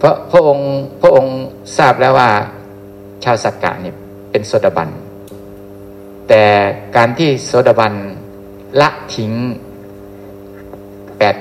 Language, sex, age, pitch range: Thai, male, 60-79, 100-130 Hz